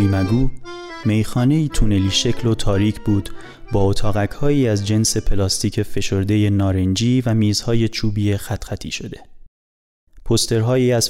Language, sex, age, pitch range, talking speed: Persian, male, 30-49, 100-120 Hz, 120 wpm